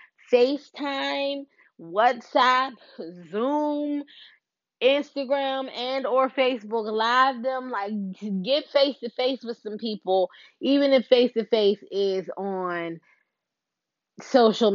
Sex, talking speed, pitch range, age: female, 100 wpm, 190-255 Hz, 20-39